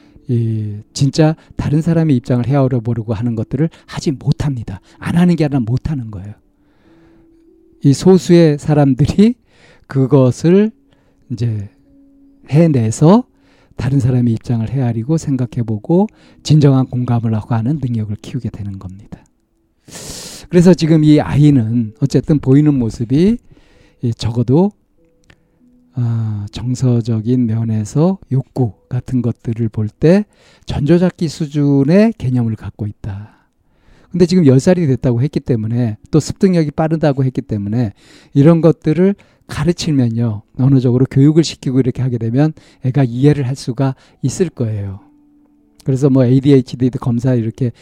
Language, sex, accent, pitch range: Korean, male, native, 120-155 Hz